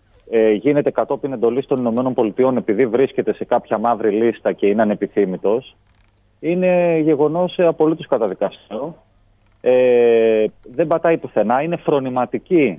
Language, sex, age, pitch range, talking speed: Greek, male, 30-49, 105-160 Hz, 120 wpm